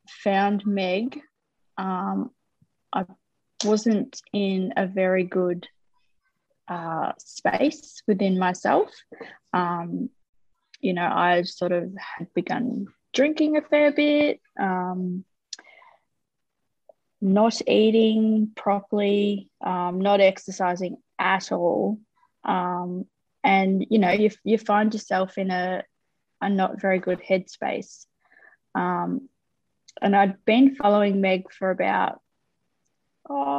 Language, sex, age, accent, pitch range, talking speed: English, female, 20-39, Australian, 185-220 Hz, 105 wpm